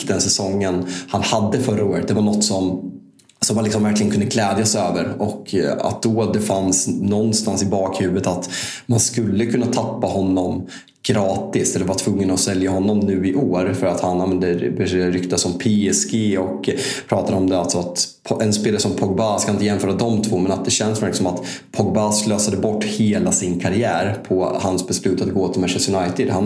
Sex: male